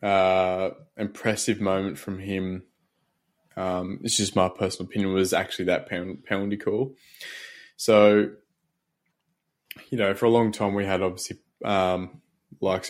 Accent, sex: Australian, male